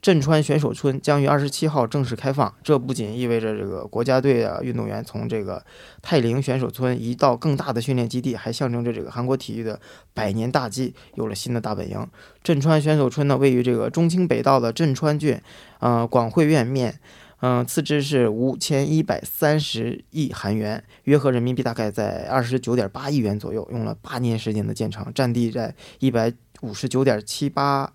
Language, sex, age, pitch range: Korean, male, 20-39, 115-145 Hz